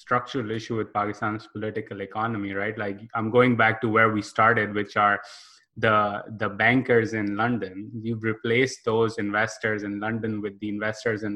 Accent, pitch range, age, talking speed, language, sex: Indian, 105-115 Hz, 20-39, 170 wpm, English, male